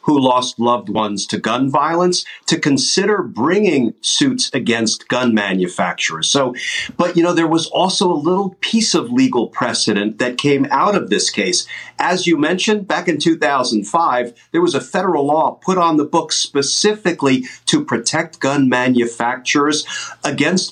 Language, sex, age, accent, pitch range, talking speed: English, male, 50-69, American, 135-180 Hz, 155 wpm